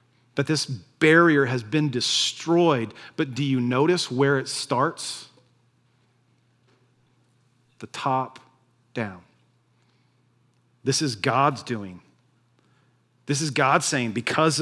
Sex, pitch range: male, 120-145 Hz